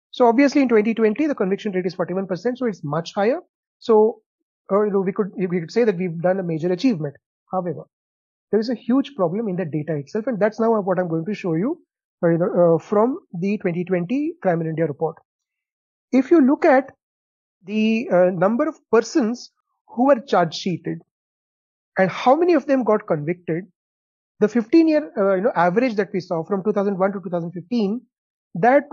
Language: English